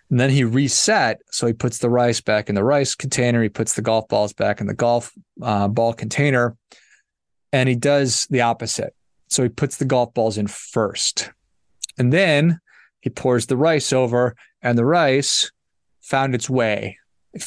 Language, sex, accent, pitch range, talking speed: English, male, American, 110-130 Hz, 180 wpm